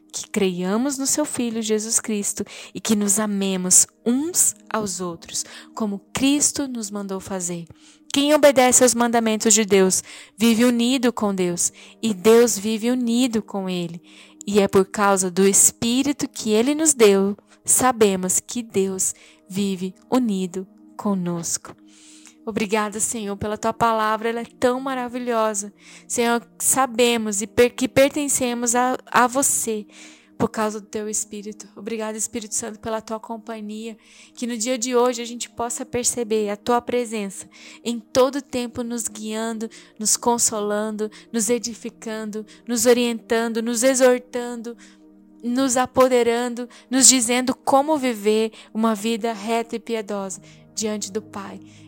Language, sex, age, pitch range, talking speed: Portuguese, female, 10-29, 205-245 Hz, 135 wpm